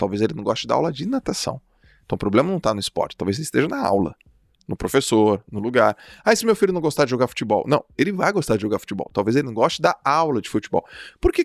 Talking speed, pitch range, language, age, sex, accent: 260 wpm, 105-155 Hz, Portuguese, 20-39, male, Brazilian